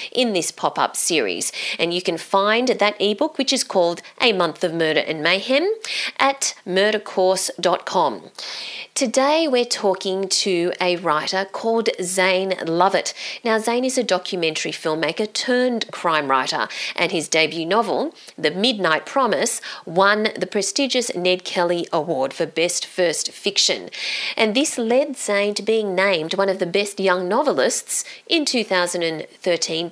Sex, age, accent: female, 30-49, Australian